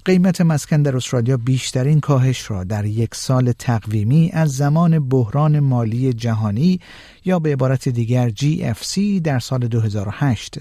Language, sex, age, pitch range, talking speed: Persian, male, 50-69, 115-155 Hz, 135 wpm